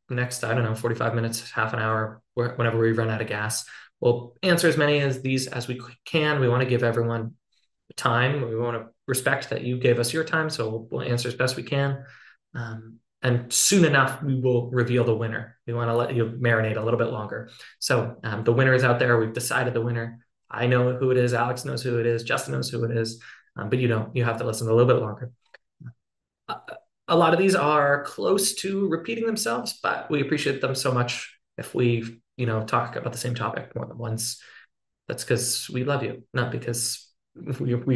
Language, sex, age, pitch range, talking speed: English, male, 20-39, 115-140 Hz, 225 wpm